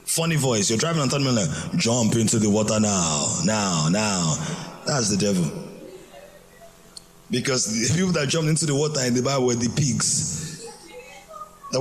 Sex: male